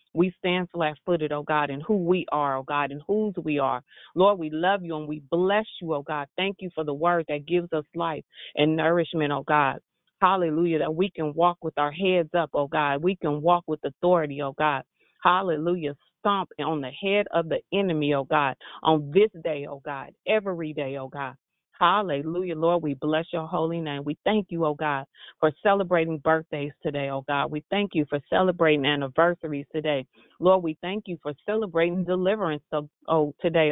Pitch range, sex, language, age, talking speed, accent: 150-185 Hz, female, English, 30-49, 190 wpm, American